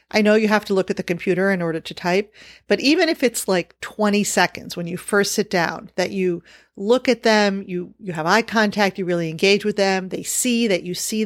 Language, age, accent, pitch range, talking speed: English, 40-59, American, 175-215 Hz, 240 wpm